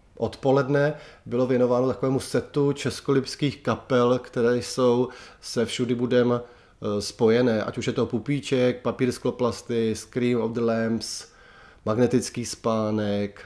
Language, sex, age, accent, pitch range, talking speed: Czech, male, 30-49, native, 110-130 Hz, 115 wpm